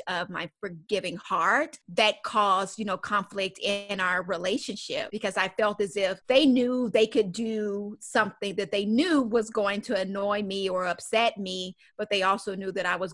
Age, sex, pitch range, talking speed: 30-49, female, 185-220 Hz, 185 wpm